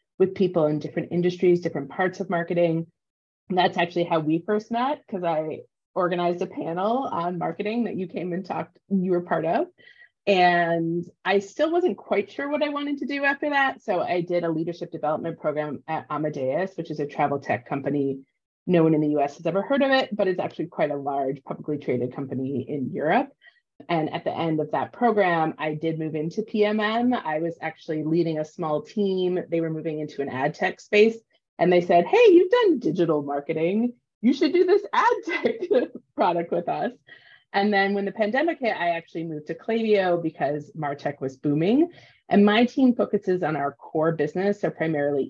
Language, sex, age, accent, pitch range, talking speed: English, female, 30-49, American, 155-210 Hz, 200 wpm